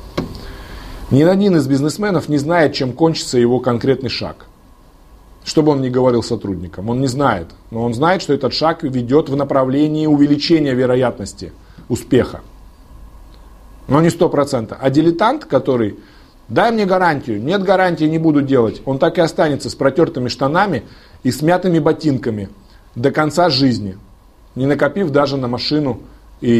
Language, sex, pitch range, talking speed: Russian, male, 105-160 Hz, 150 wpm